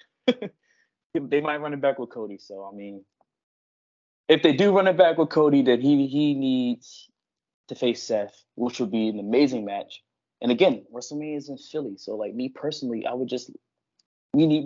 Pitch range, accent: 115-140 Hz, American